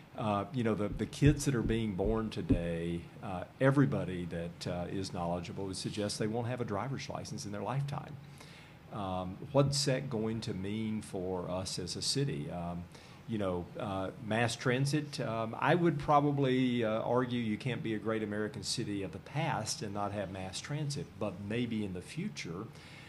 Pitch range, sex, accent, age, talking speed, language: 100-135 Hz, male, American, 50-69, 185 wpm, English